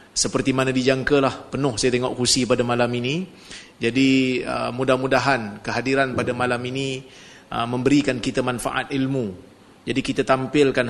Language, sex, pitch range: Malay, male, 125-140 Hz